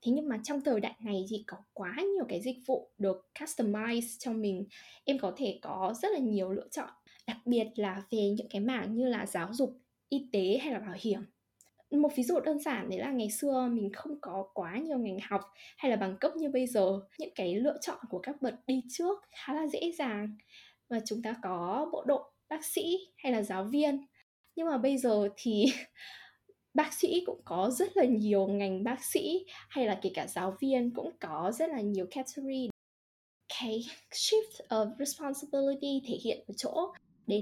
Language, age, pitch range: Vietnamese, 10-29, 210-280 Hz